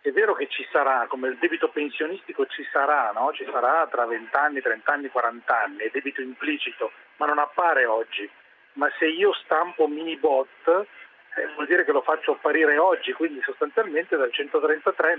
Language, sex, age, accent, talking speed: Italian, male, 40-59, native, 180 wpm